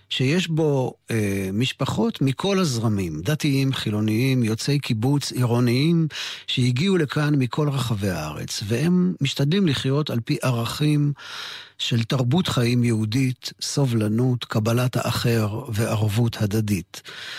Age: 50-69